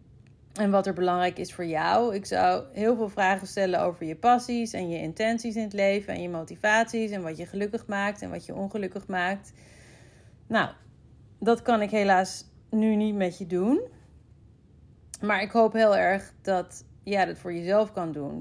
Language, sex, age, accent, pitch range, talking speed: Dutch, female, 40-59, Dutch, 175-220 Hz, 190 wpm